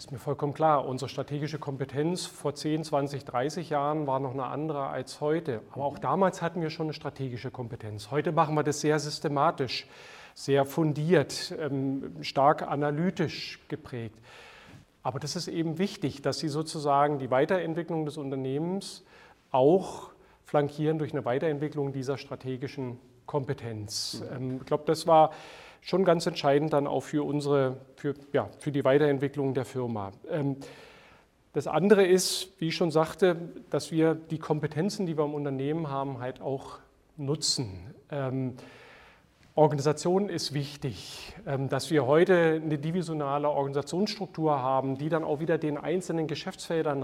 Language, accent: German, German